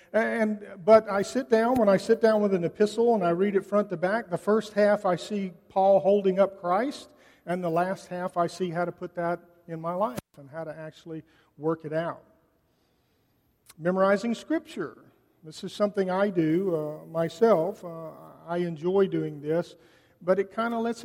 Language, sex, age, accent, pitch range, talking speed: English, male, 50-69, American, 165-205 Hz, 190 wpm